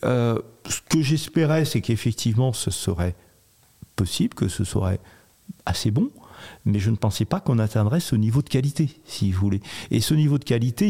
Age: 50-69